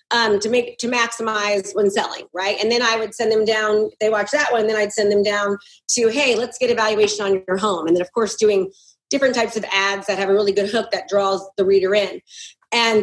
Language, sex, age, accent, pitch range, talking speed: English, female, 30-49, American, 200-255 Hz, 245 wpm